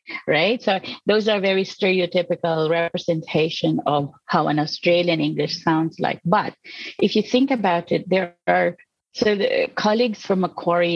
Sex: female